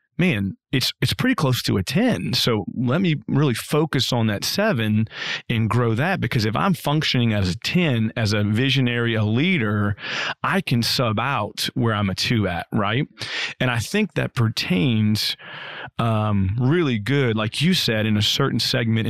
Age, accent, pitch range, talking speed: 30-49, American, 110-135 Hz, 175 wpm